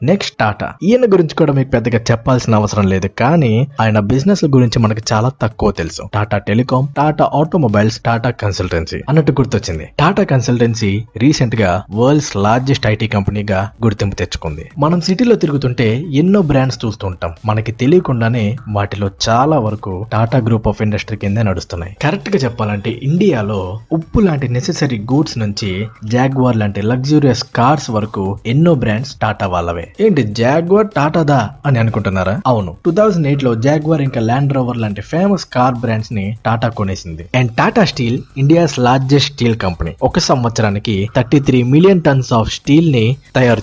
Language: Telugu